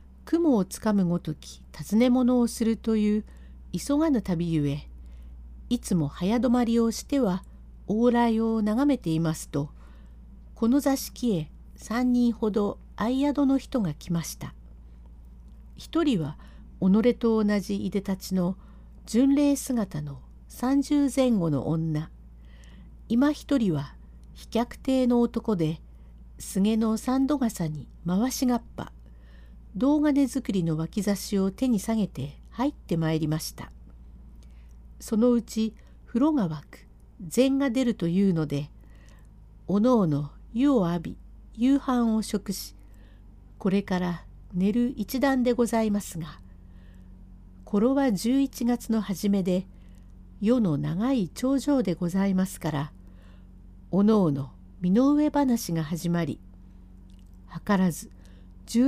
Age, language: 50-69, Japanese